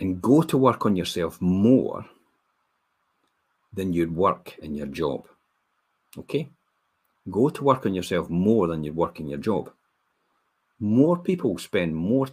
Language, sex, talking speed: English, male, 145 wpm